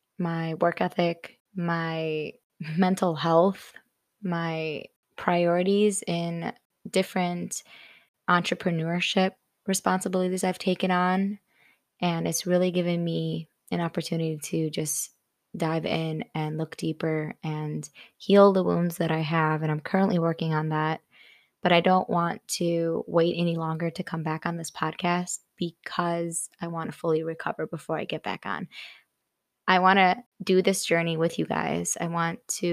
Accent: American